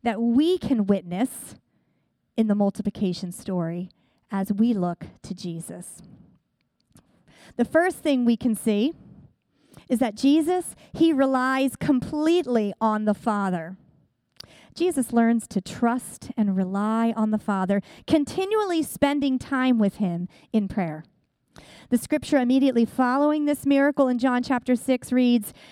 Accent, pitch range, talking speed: American, 215-280 Hz, 130 wpm